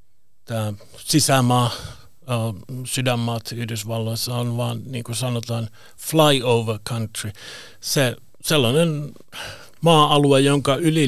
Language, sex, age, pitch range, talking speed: Finnish, male, 60-79, 110-135 Hz, 85 wpm